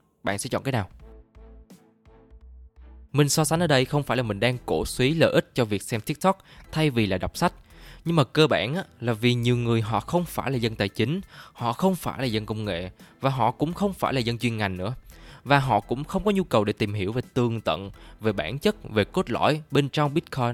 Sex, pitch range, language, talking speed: male, 110-155 Hz, Vietnamese, 240 wpm